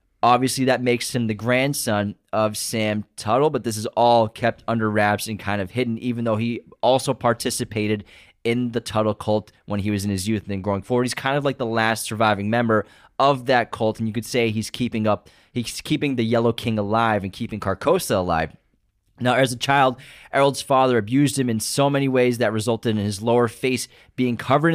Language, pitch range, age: English, 105-125 Hz, 20-39